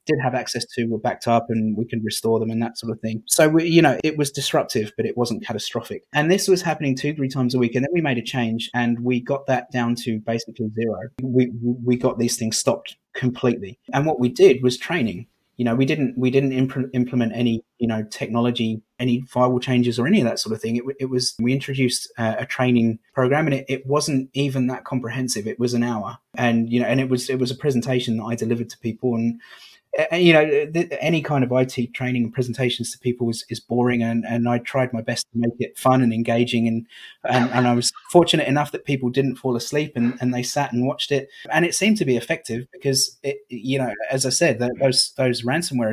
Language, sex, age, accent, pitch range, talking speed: English, male, 30-49, British, 115-135 Hz, 240 wpm